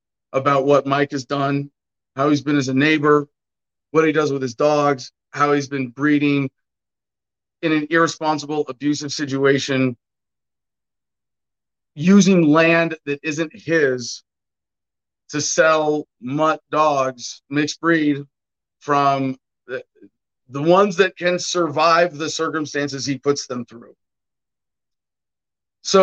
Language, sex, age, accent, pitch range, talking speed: English, male, 40-59, American, 130-165 Hz, 120 wpm